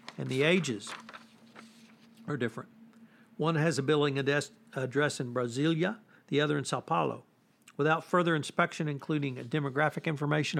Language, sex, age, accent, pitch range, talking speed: English, male, 60-79, American, 140-180 Hz, 130 wpm